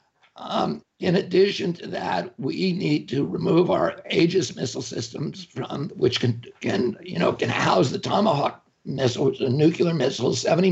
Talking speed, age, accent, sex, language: 155 wpm, 60-79, American, male, English